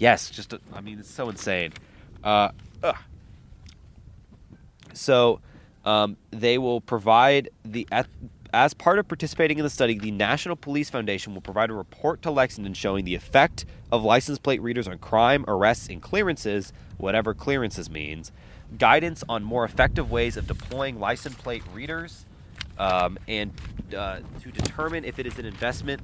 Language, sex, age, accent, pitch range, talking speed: English, male, 30-49, American, 95-125 Hz, 150 wpm